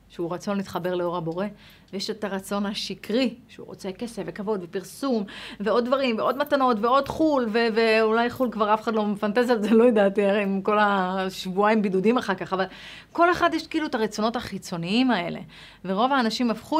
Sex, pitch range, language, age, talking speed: female, 190-250 Hz, Hebrew, 30-49, 175 wpm